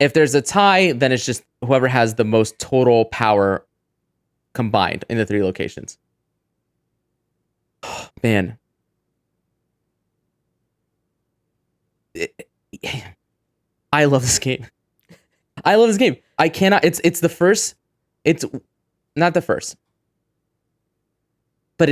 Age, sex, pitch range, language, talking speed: 20-39, male, 110-145 Hz, English, 105 wpm